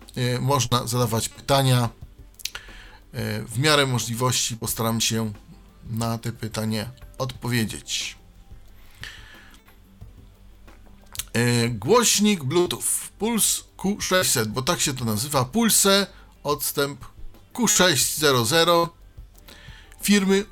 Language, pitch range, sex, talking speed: Polish, 115-170 Hz, male, 75 wpm